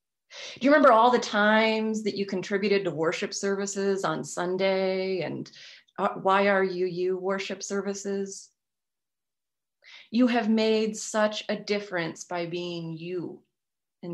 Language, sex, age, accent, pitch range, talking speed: English, female, 30-49, American, 180-220 Hz, 135 wpm